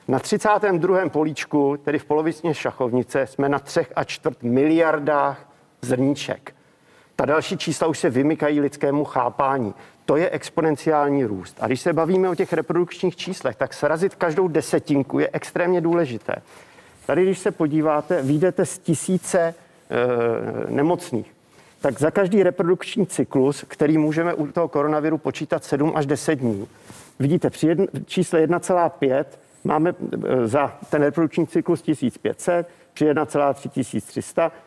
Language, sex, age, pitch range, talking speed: Czech, male, 50-69, 140-175 Hz, 135 wpm